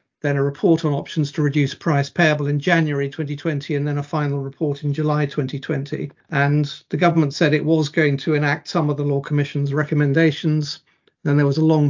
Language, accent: English, British